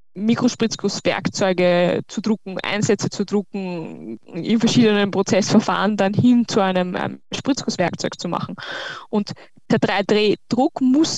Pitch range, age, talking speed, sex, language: 185-230 Hz, 10-29, 115 wpm, female, German